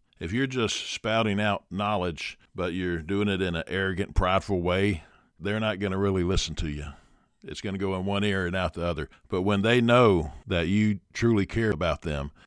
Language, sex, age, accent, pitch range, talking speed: English, male, 50-69, American, 90-110 Hz, 200 wpm